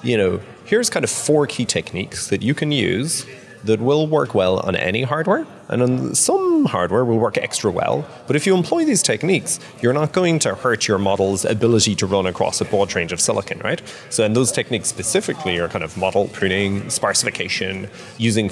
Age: 30-49